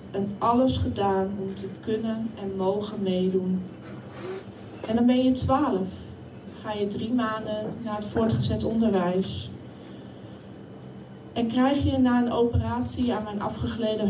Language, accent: Dutch, Dutch